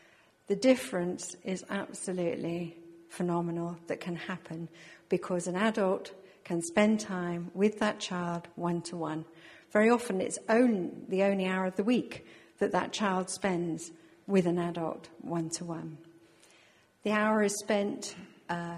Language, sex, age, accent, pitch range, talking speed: English, female, 50-69, British, 170-205 Hz, 130 wpm